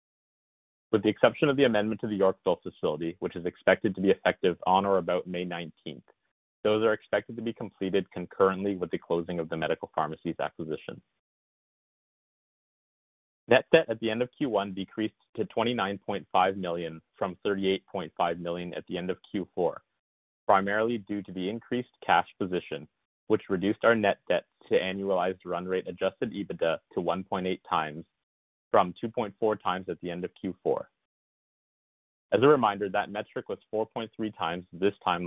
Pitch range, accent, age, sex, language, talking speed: 85-105 Hz, American, 30-49, male, English, 160 wpm